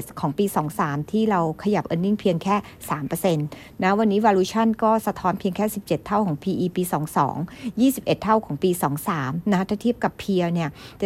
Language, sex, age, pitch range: Thai, female, 60-79, 170-210 Hz